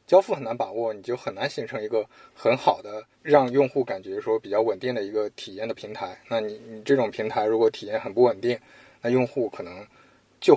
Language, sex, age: Chinese, male, 20-39